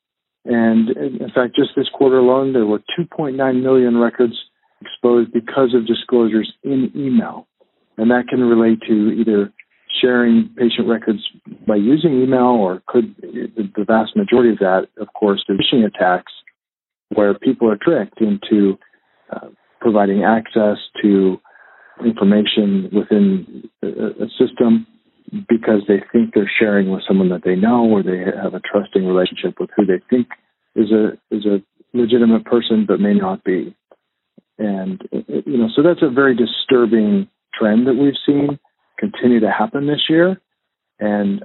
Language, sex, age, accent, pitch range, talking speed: English, male, 50-69, American, 105-125 Hz, 150 wpm